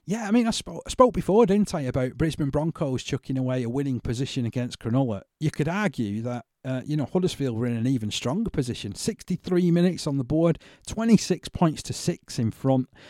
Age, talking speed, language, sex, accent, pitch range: 40-59, 200 wpm, English, male, British, 120-150 Hz